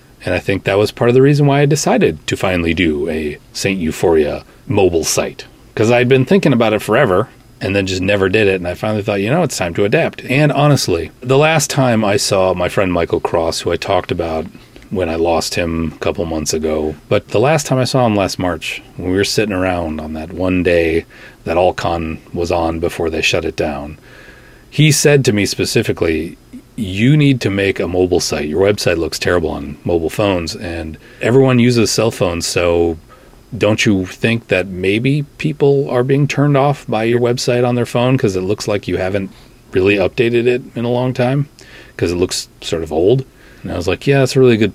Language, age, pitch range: English, 30-49, 90-130 Hz